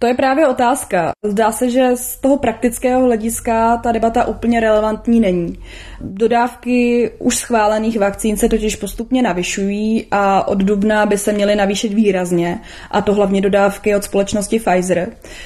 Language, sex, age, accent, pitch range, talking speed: Czech, female, 20-39, native, 200-230 Hz, 150 wpm